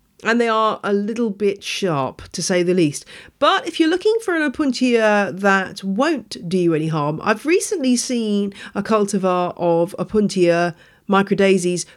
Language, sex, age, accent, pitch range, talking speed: English, female, 40-59, British, 160-210 Hz, 160 wpm